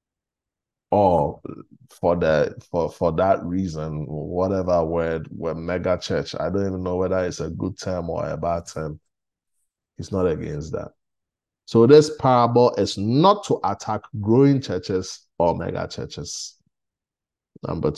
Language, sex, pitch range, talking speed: English, male, 95-145 Hz, 145 wpm